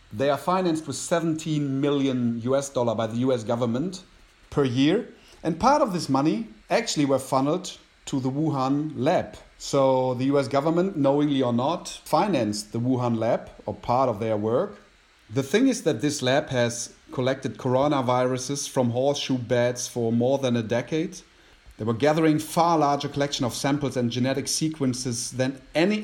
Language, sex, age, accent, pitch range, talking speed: English, male, 40-59, German, 120-150 Hz, 165 wpm